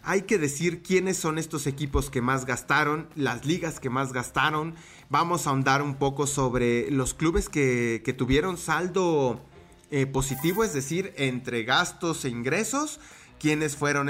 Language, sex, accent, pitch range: English, male, Mexican, 120-165 Hz